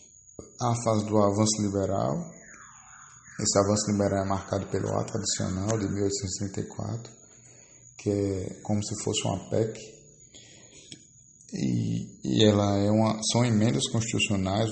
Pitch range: 100-115 Hz